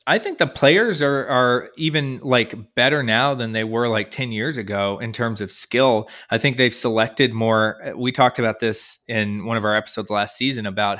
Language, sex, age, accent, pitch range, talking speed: English, male, 20-39, American, 110-140 Hz, 205 wpm